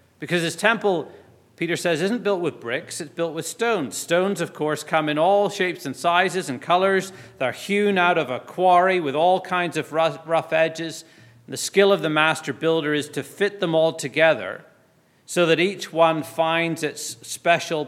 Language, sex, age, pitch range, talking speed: English, male, 40-59, 130-170 Hz, 190 wpm